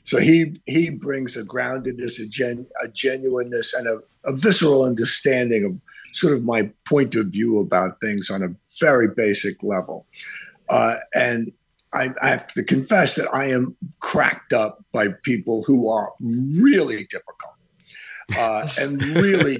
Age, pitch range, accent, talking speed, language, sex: 50-69, 115-155 Hz, American, 155 wpm, English, male